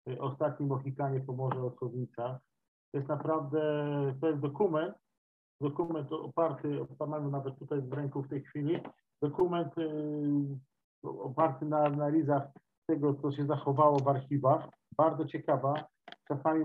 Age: 50-69